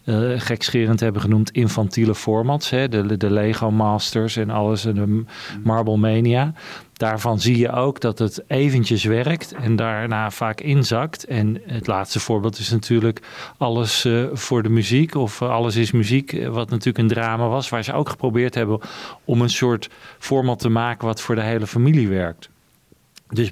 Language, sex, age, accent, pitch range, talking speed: Dutch, male, 40-59, Dutch, 110-130 Hz, 170 wpm